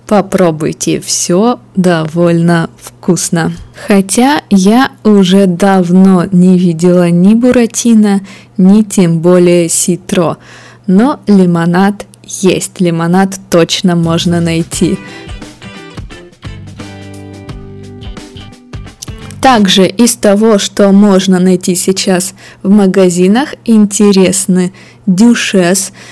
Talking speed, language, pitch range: 80 wpm, Russian, 175-210 Hz